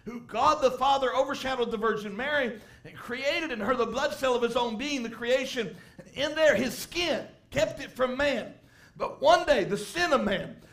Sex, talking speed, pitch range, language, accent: male, 200 wpm, 230-275 Hz, English, American